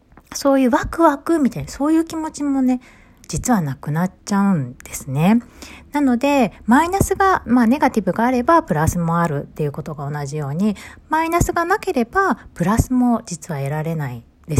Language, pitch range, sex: Japanese, 150-255 Hz, female